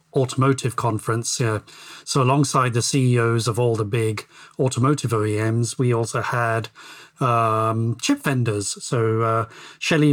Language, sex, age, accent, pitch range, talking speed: English, male, 40-59, British, 115-145 Hz, 130 wpm